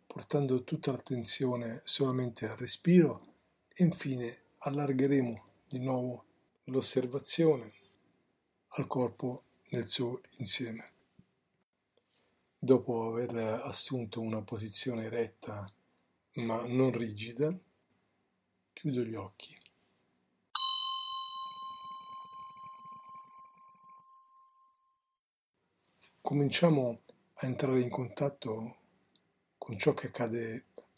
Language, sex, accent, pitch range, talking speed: Italian, male, native, 115-155 Hz, 75 wpm